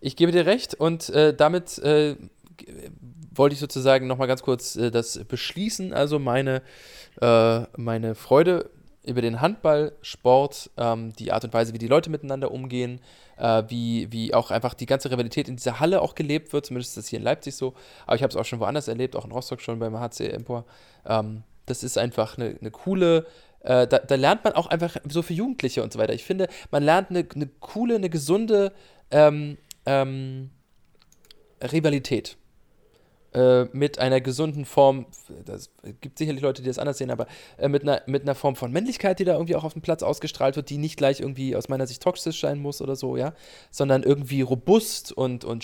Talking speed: 195 wpm